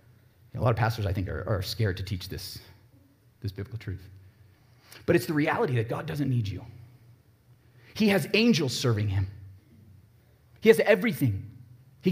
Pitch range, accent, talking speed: 115-190 Hz, American, 165 wpm